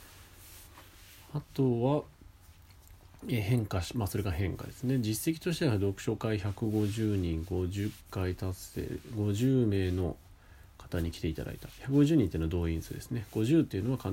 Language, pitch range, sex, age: Japanese, 90-110 Hz, male, 40-59